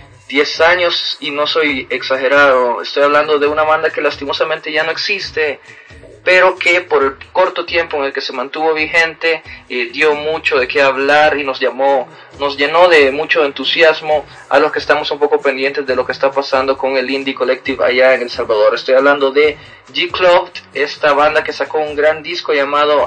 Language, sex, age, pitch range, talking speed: Spanish, male, 30-49, 140-180 Hz, 190 wpm